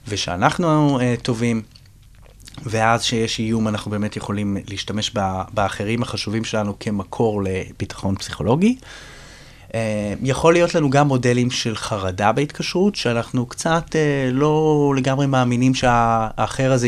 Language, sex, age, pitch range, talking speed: Hebrew, male, 30-49, 105-135 Hz, 125 wpm